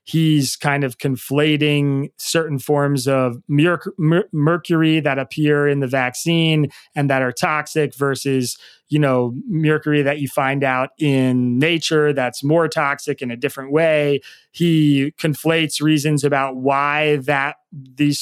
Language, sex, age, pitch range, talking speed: English, male, 30-49, 130-155 Hz, 135 wpm